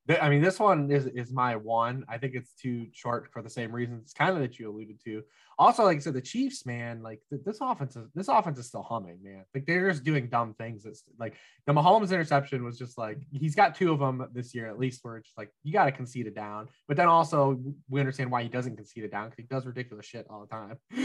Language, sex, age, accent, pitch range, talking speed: English, male, 20-39, American, 115-140 Hz, 255 wpm